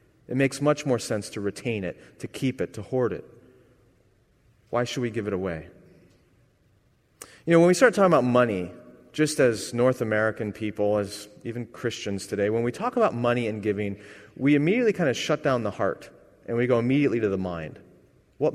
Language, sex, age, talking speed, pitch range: English, male, 30-49, 195 wpm, 105-140 Hz